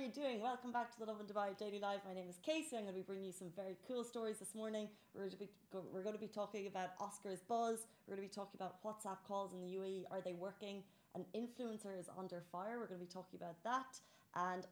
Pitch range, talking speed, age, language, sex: 180-215 Hz, 275 wpm, 20-39, Arabic, female